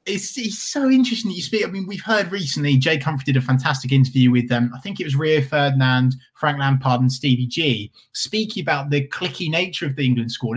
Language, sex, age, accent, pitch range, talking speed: English, male, 20-39, British, 125-170 Hz, 235 wpm